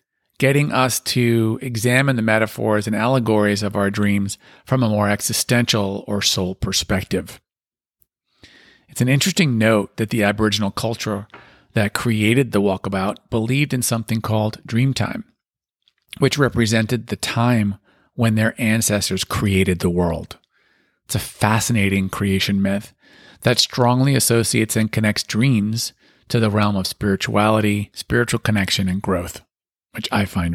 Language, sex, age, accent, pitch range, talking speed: English, male, 40-59, American, 105-130 Hz, 135 wpm